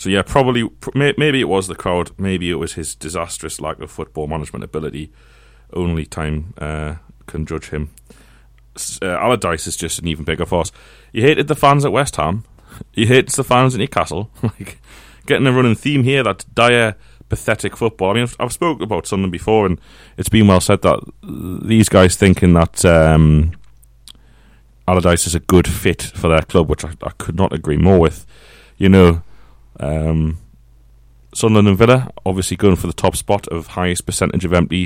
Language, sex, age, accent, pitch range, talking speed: English, male, 30-49, British, 80-100 Hz, 185 wpm